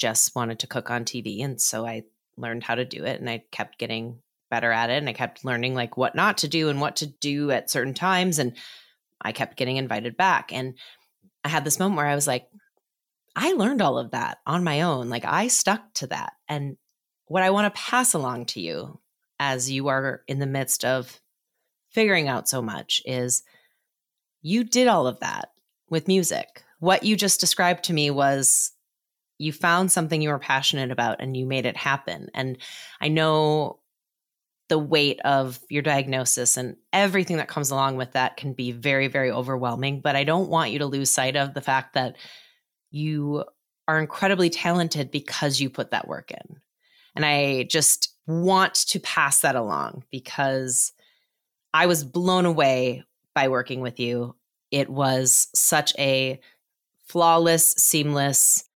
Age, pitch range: 30-49, 130-165 Hz